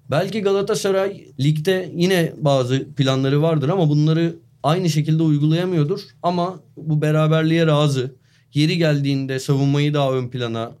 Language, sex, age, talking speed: Turkish, male, 30-49, 120 wpm